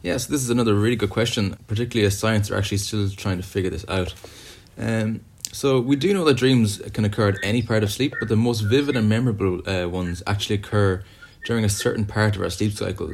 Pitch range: 95-115 Hz